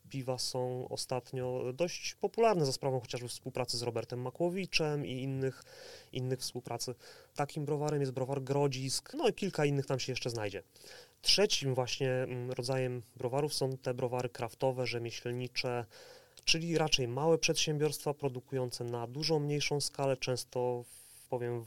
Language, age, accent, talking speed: Polish, 30-49, native, 135 wpm